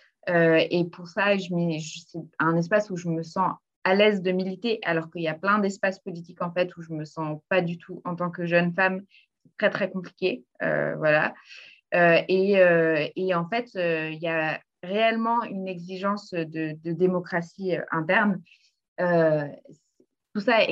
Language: French